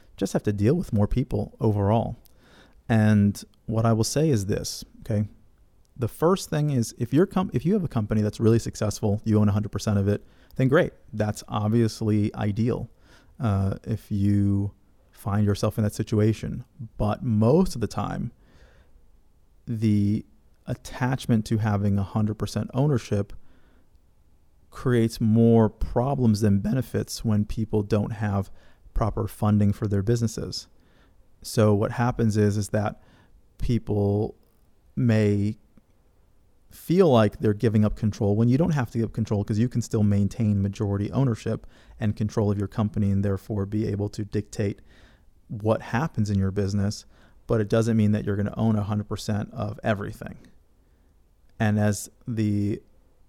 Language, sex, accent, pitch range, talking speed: English, male, American, 100-115 Hz, 150 wpm